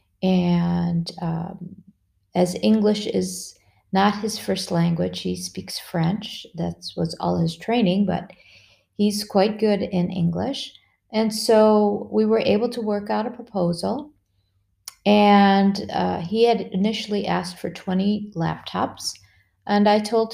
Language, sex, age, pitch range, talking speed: English, female, 40-59, 170-210 Hz, 135 wpm